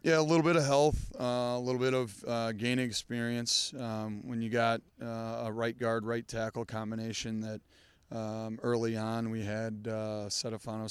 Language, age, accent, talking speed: English, 30-49, American, 180 wpm